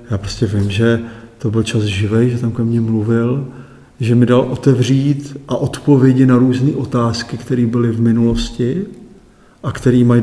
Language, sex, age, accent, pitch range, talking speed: Czech, male, 50-69, native, 115-135 Hz, 170 wpm